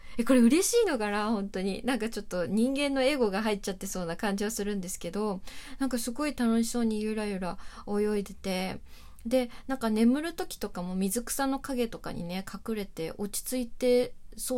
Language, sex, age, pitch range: Japanese, female, 20-39, 190-240 Hz